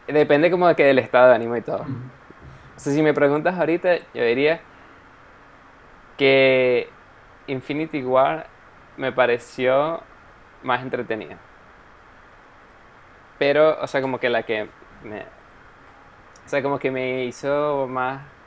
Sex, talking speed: male, 130 wpm